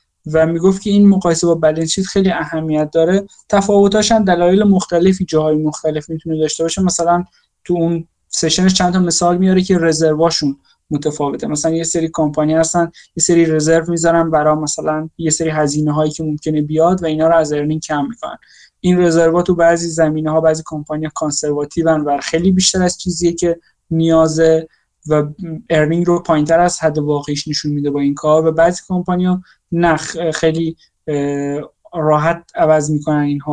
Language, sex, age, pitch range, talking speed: Persian, male, 20-39, 150-170 Hz, 165 wpm